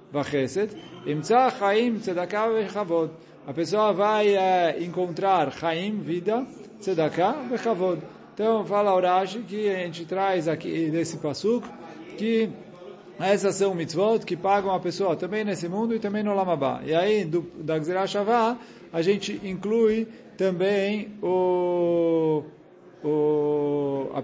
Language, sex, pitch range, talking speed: Portuguese, male, 165-210 Hz, 115 wpm